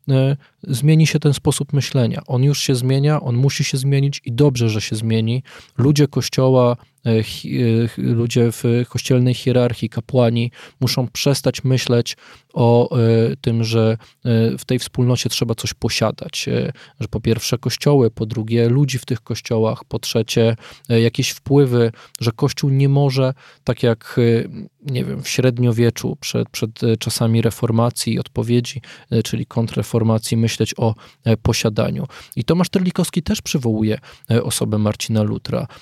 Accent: native